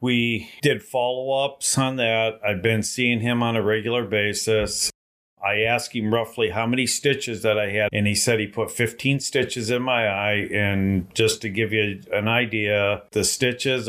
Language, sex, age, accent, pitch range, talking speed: English, male, 50-69, American, 100-115 Hz, 180 wpm